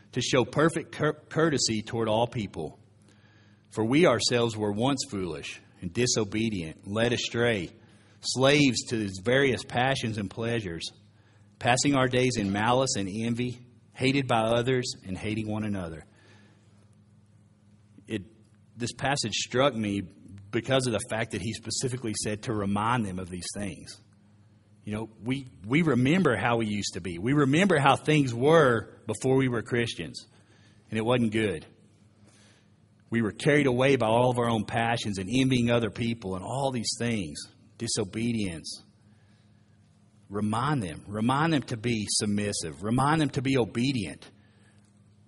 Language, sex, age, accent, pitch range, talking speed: English, male, 40-59, American, 105-125 Hz, 150 wpm